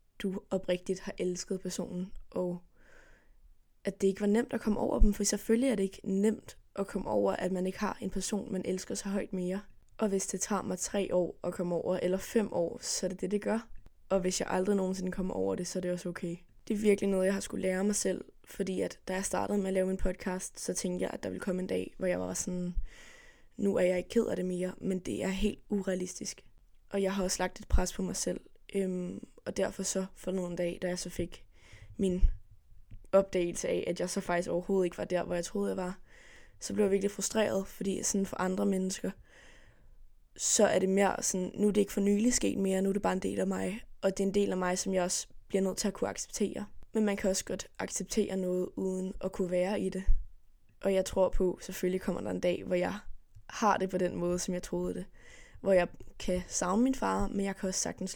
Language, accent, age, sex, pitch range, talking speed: Danish, native, 20-39, female, 180-200 Hz, 250 wpm